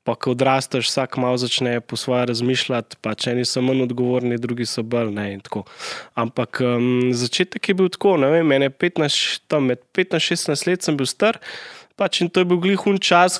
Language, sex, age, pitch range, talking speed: Slovak, male, 20-39, 130-170 Hz, 195 wpm